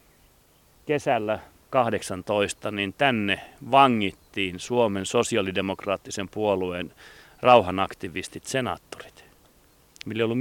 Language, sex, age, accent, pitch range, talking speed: Finnish, male, 40-59, native, 100-135 Hz, 70 wpm